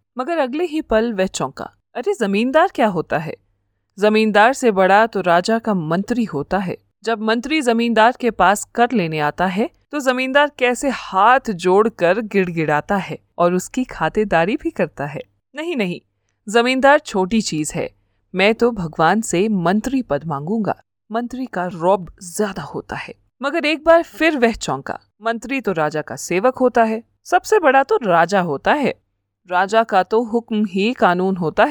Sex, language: female, Hindi